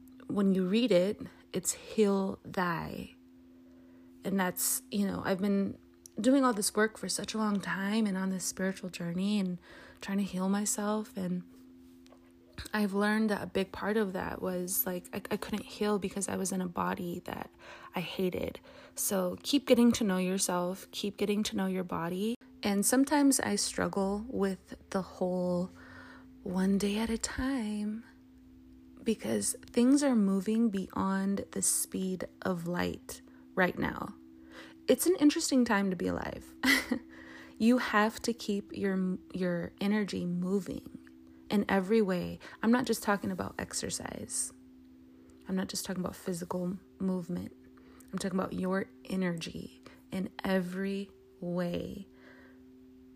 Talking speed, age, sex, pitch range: 145 wpm, 20-39, female, 130-210 Hz